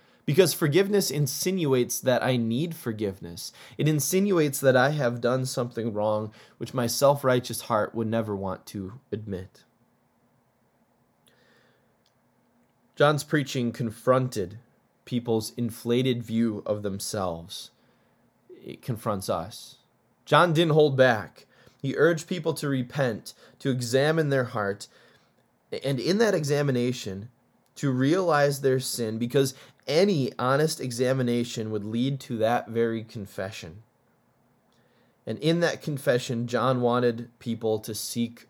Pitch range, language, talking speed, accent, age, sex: 115-140 Hz, English, 115 wpm, American, 20-39, male